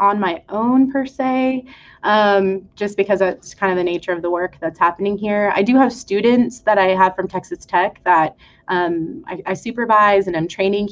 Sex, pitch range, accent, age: female, 180-205 Hz, American, 20-39